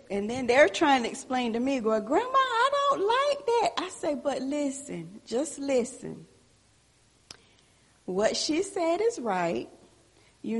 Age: 40-59